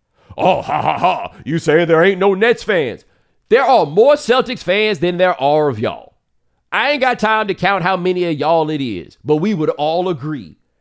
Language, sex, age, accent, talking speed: English, male, 40-59, American, 210 wpm